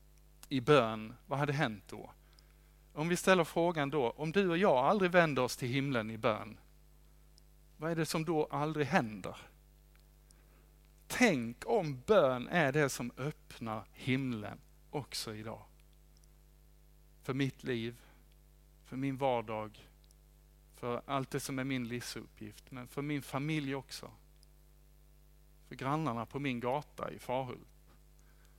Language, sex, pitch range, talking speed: Swedish, male, 120-150 Hz, 135 wpm